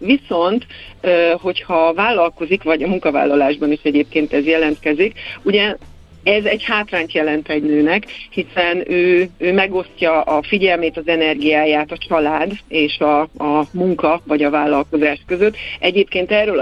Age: 60-79